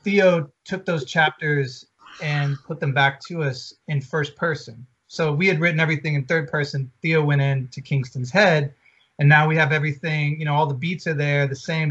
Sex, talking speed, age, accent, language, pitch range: male, 205 wpm, 30-49, American, English, 140-170 Hz